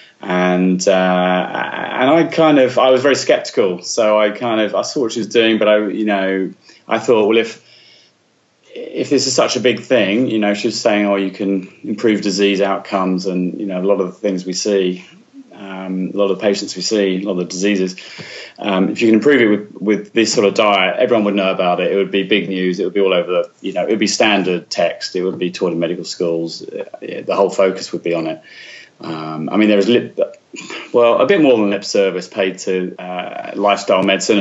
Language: English